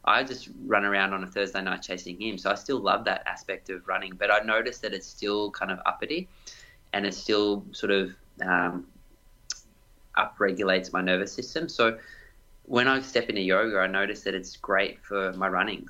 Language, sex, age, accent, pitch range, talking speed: English, male, 20-39, Australian, 95-105 Hz, 195 wpm